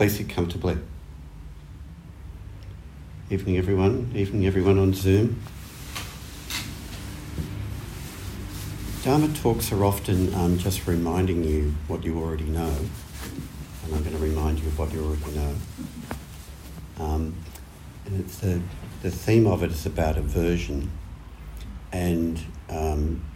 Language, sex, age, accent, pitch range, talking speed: English, male, 60-79, Australian, 75-90 Hz, 115 wpm